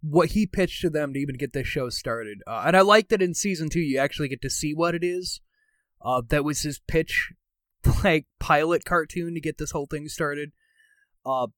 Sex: male